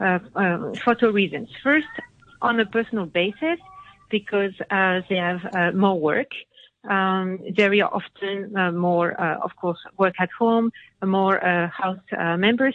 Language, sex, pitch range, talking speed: English, female, 180-225 Hz, 155 wpm